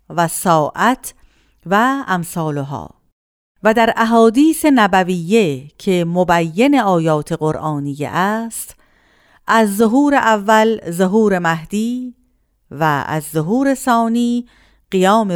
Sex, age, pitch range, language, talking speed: female, 50-69, 165-225 Hz, Persian, 90 wpm